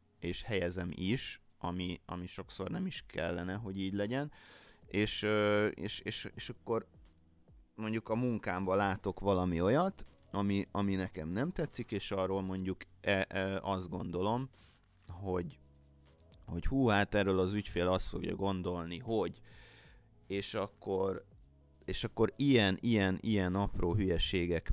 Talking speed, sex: 120 wpm, male